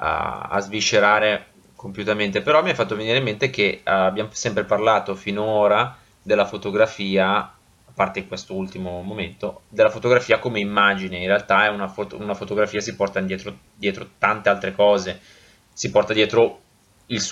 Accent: native